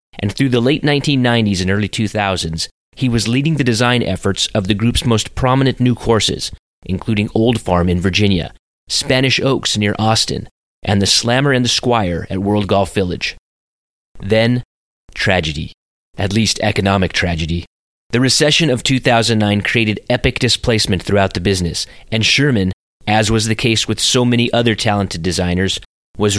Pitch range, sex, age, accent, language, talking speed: 95-120 Hz, male, 30-49, American, English, 155 wpm